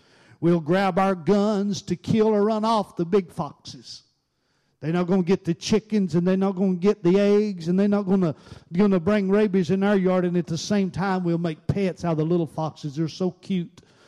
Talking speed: 225 wpm